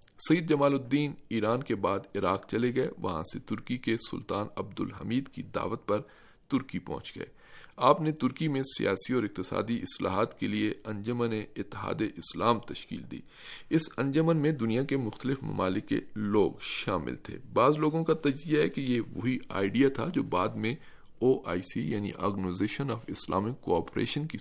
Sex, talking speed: male, 170 wpm